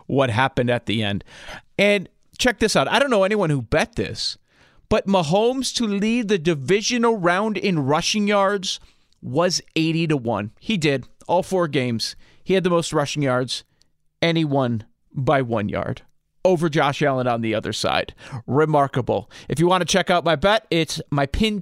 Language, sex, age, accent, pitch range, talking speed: English, male, 40-59, American, 140-195 Hz, 180 wpm